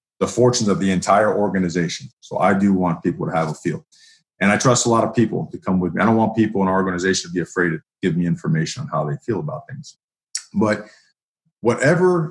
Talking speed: 235 wpm